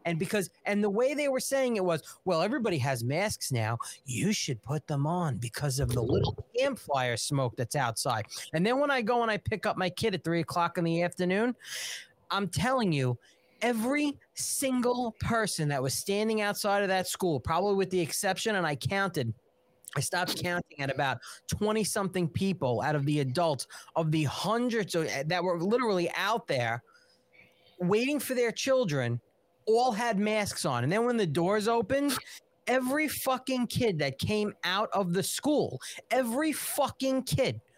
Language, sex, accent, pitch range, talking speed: English, male, American, 160-235 Hz, 175 wpm